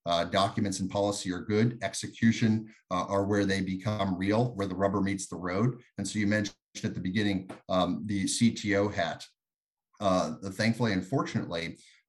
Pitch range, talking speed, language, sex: 95-110 Hz, 165 wpm, English, male